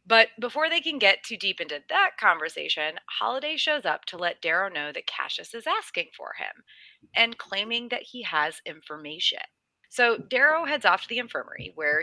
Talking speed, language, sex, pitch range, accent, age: 185 wpm, English, female, 165-245 Hz, American, 30-49